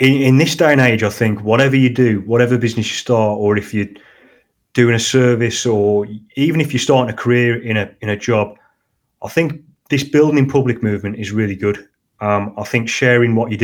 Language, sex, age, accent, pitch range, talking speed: English, male, 30-49, British, 110-130 Hz, 205 wpm